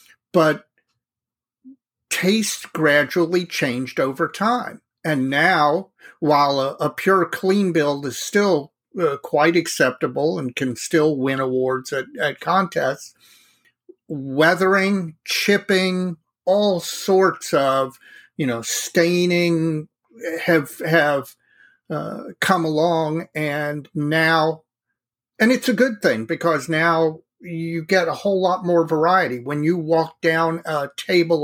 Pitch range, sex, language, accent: 150-190 Hz, male, English, American